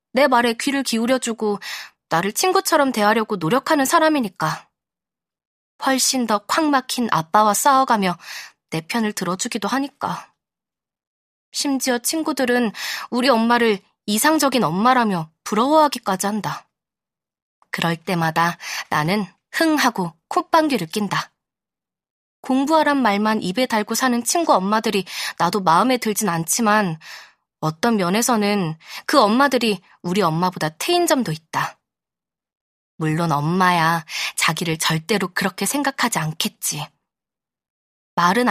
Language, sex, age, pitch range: Korean, female, 20-39, 180-255 Hz